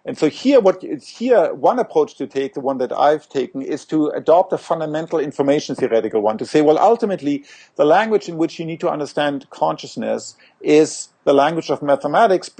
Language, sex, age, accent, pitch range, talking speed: English, male, 50-69, German, 145-190 Hz, 175 wpm